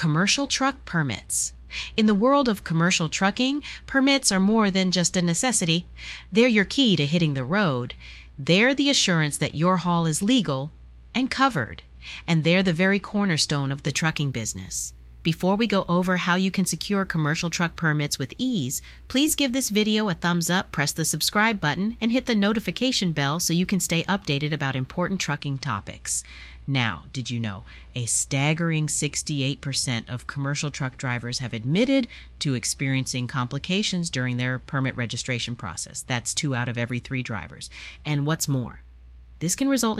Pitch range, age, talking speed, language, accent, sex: 120-190 Hz, 40-59, 170 wpm, English, American, female